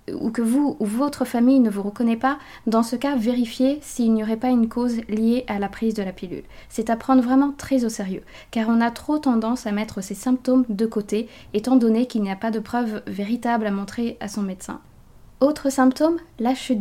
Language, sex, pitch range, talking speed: French, female, 210-255 Hz, 225 wpm